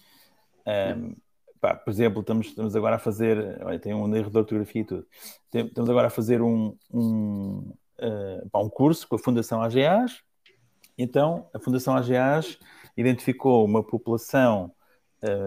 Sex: male